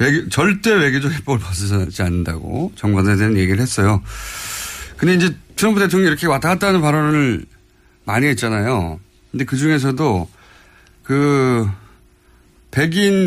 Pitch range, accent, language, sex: 100-160 Hz, native, Korean, male